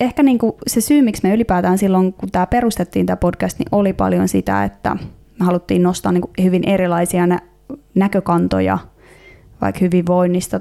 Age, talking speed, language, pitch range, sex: 20-39, 155 wpm, Finnish, 175-195 Hz, female